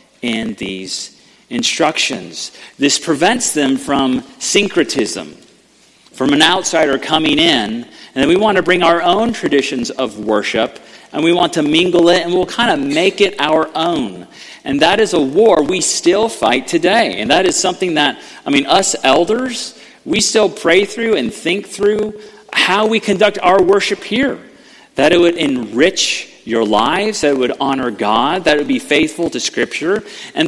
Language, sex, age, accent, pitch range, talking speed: English, male, 40-59, American, 140-220 Hz, 170 wpm